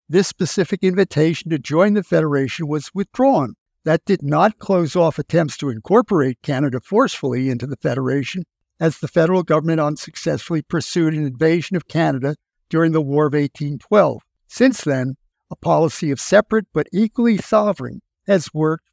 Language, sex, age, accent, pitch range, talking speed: English, male, 60-79, American, 150-195 Hz, 150 wpm